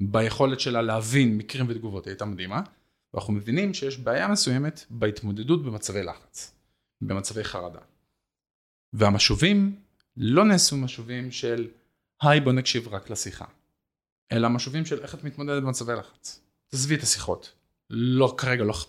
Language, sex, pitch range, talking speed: Hebrew, male, 105-140 Hz, 130 wpm